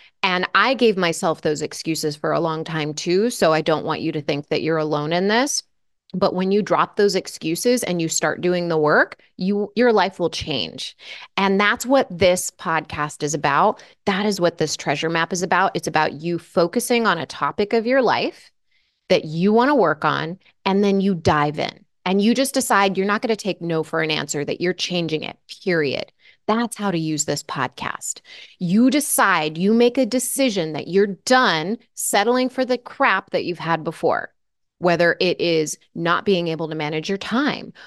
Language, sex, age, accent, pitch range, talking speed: English, female, 30-49, American, 165-220 Hz, 200 wpm